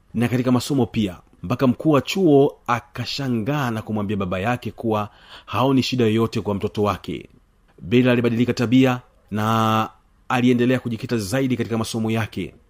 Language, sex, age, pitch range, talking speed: Swahili, male, 40-59, 105-125 Hz, 135 wpm